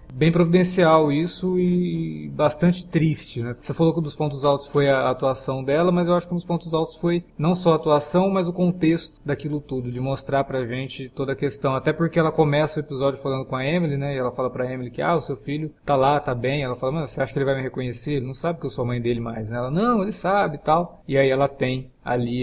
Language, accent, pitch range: Portuguese, Brazilian, 130-170 Hz